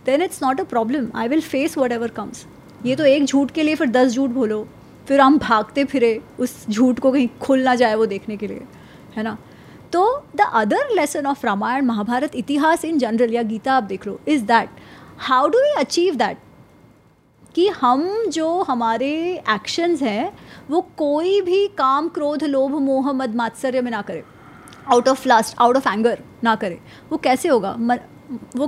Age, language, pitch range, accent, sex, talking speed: 20-39, Hindi, 245-320 Hz, native, female, 185 wpm